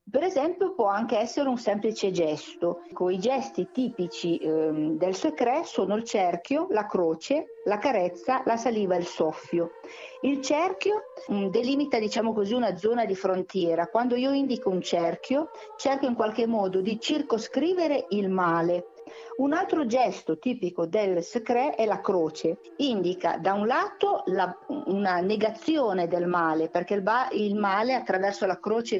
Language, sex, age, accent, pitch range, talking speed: Italian, female, 50-69, native, 180-250 Hz, 145 wpm